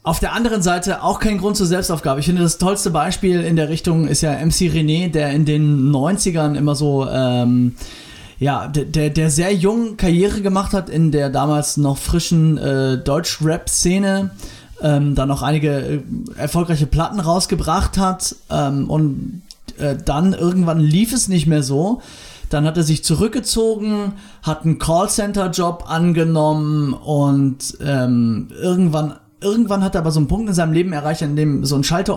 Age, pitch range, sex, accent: 30-49, 145-180 Hz, male, German